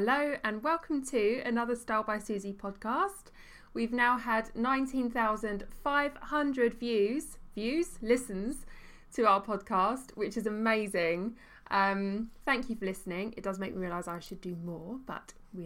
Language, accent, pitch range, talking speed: English, British, 185-240 Hz, 145 wpm